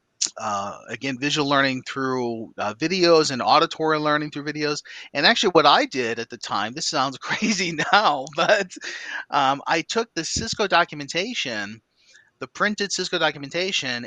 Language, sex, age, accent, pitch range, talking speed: English, male, 30-49, American, 120-165 Hz, 150 wpm